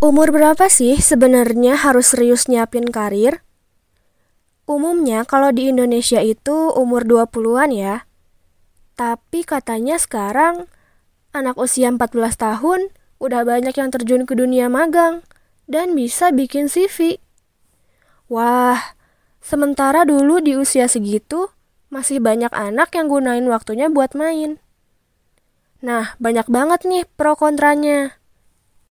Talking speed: 110 wpm